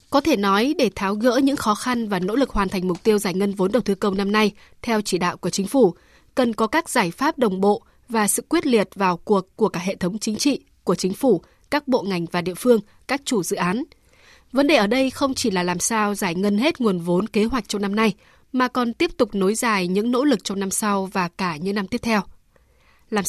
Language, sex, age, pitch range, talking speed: Vietnamese, female, 20-39, 195-245 Hz, 260 wpm